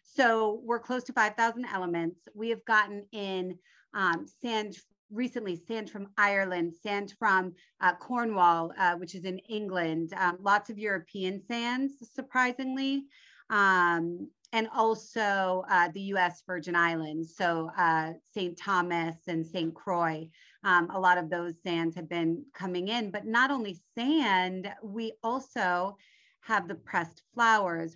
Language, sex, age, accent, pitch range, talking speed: English, female, 30-49, American, 170-210 Hz, 140 wpm